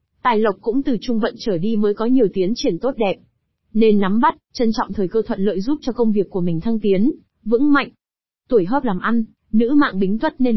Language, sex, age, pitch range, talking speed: Vietnamese, female, 20-39, 195-245 Hz, 245 wpm